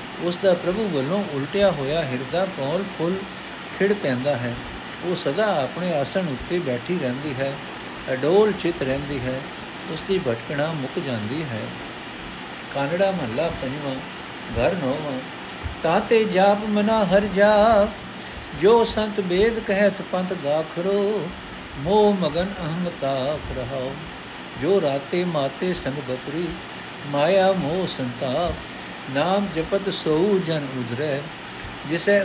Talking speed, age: 115 wpm, 60-79